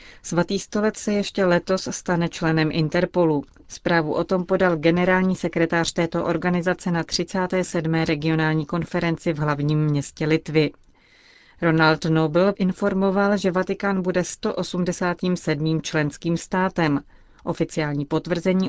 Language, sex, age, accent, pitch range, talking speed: Czech, female, 30-49, native, 155-180 Hz, 110 wpm